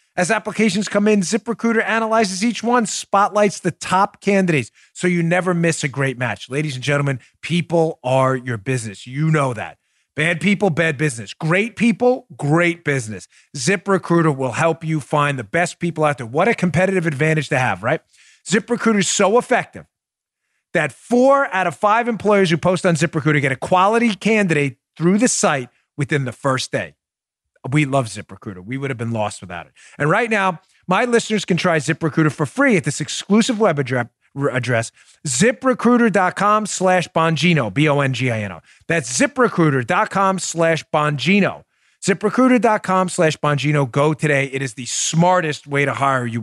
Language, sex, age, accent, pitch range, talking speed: English, male, 30-49, American, 135-200 Hz, 170 wpm